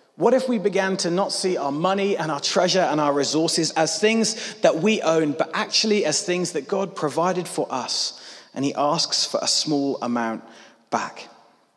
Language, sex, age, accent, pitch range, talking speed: English, male, 30-49, British, 155-200 Hz, 190 wpm